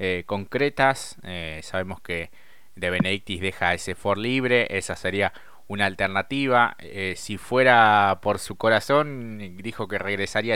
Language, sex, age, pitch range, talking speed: Spanish, male, 20-39, 95-115 Hz, 135 wpm